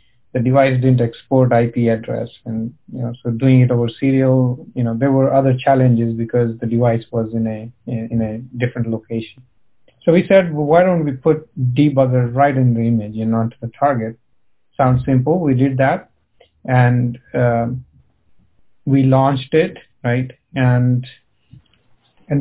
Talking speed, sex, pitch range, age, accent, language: 160 wpm, male, 120-140 Hz, 50-69, Indian, English